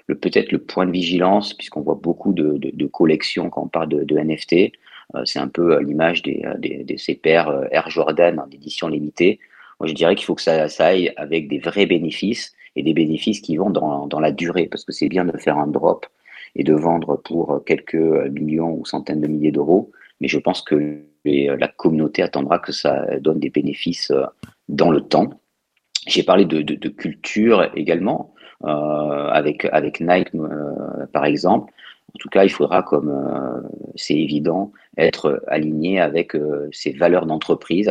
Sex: male